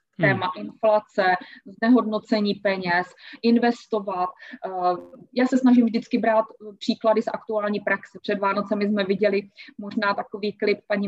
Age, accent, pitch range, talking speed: 20-39, native, 200-240 Hz, 120 wpm